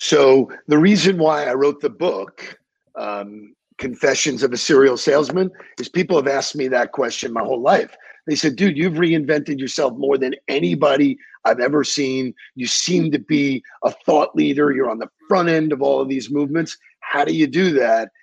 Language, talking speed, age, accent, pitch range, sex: English, 190 wpm, 50-69, American, 145-175 Hz, male